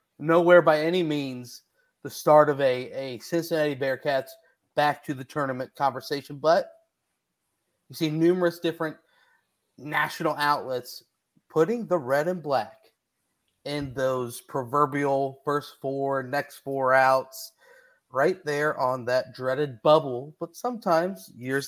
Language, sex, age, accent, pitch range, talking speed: English, male, 30-49, American, 140-175 Hz, 125 wpm